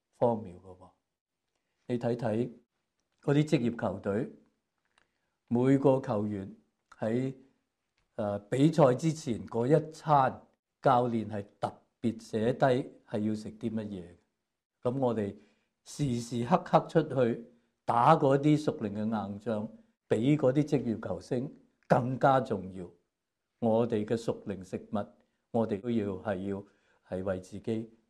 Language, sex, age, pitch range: English, male, 50-69, 110-150 Hz